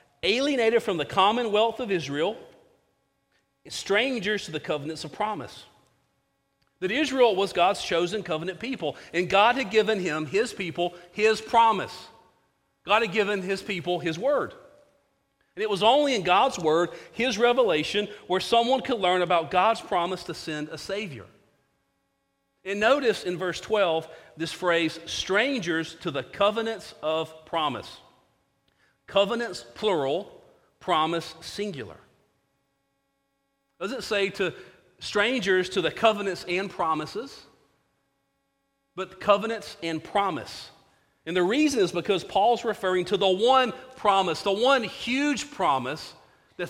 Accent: American